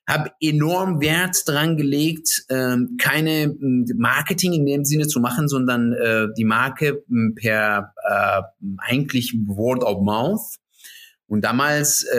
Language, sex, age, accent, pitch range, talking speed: German, male, 30-49, German, 115-155 Hz, 110 wpm